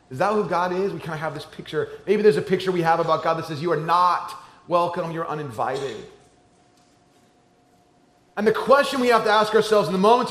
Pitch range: 165-225 Hz